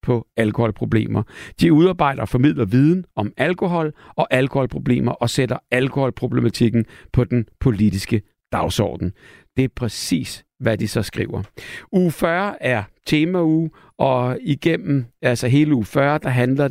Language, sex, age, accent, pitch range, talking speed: Danish, male, 60-79, native, 115-145 Hz, 135 wpm